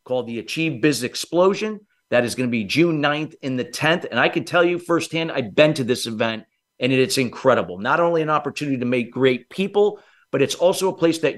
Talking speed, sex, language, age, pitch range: 220 wpm, male, English, 50-69, 125-165 Hz